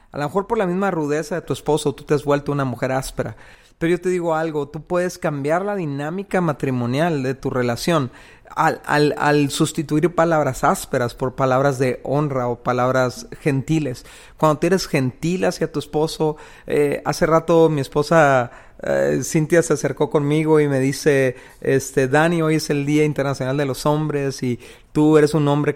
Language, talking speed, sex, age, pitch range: Spanish, 180 wpm, male, 30-49, 135-160 Hz